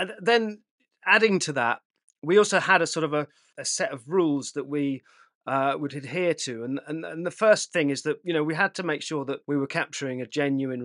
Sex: male